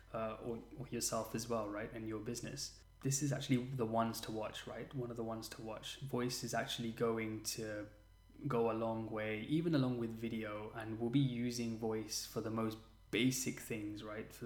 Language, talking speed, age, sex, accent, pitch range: English, 205 wpm, 10-29, male, British, 110-120 Hz